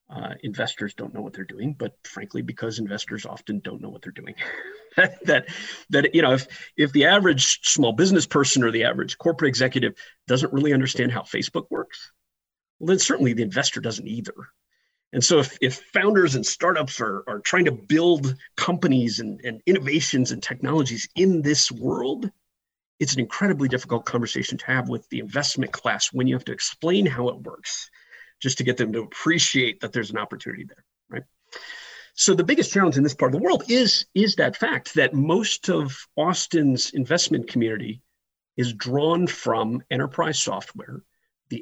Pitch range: 125-170 Hz